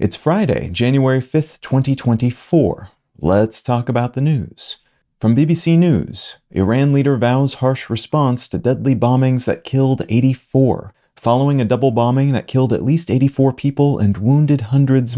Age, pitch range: 30-49, 110-135 Hz